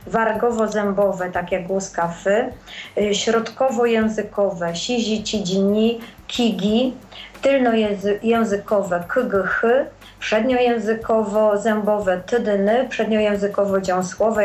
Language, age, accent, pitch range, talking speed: Polish, 30-49, native, 200-235 Hz, 75 wpm